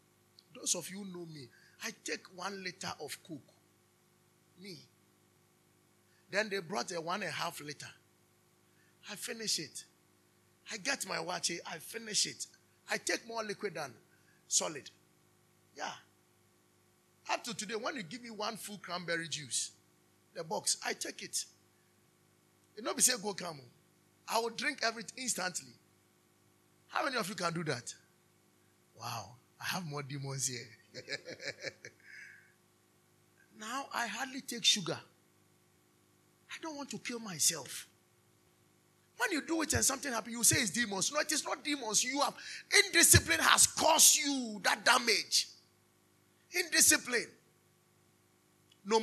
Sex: male